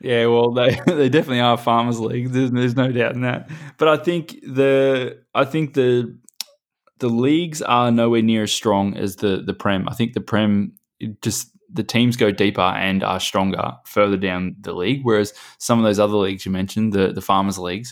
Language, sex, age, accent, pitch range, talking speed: English, male, 20-39, Australian, 95-120 Hz, 205 wpm